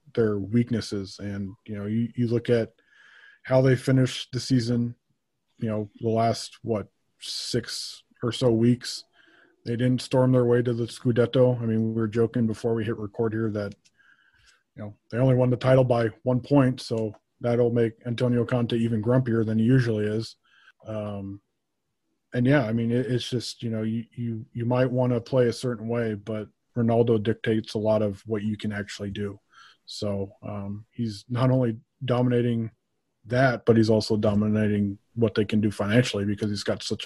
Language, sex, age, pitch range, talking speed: English, male, 20-39, 110-125 Hz, 185 wpm